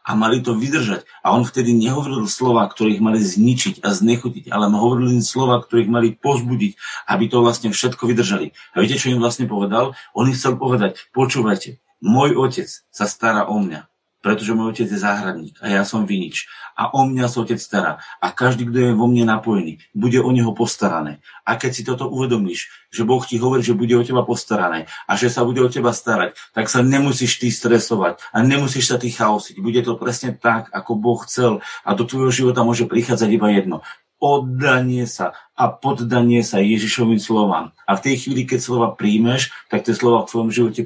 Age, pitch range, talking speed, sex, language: 40-59, 115-125 Hz, 200 wpm, male, Slovak